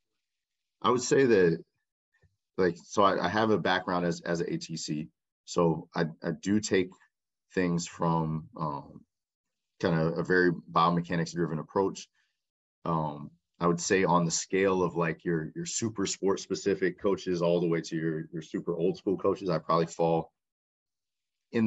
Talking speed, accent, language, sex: 165 wpm, American, English, male